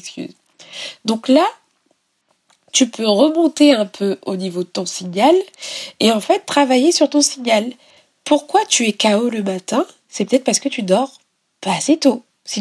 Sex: female